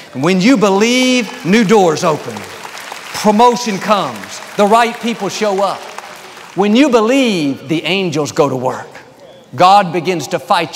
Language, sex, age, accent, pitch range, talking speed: English, male, 50-69, American, 140-205 Hz, 140 wpm